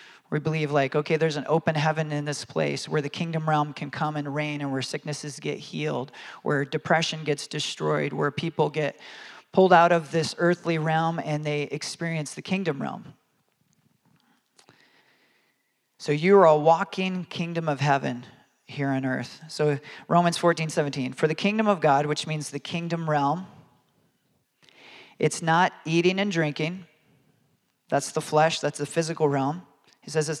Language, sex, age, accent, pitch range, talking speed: English, male, 40-59, American, 145-165 Hz, 165 wpm